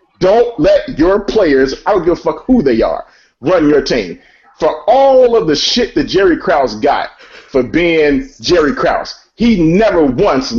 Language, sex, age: English, male, 40-59